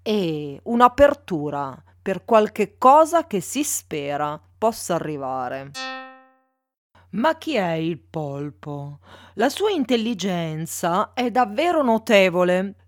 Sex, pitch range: female, 165-260 Hz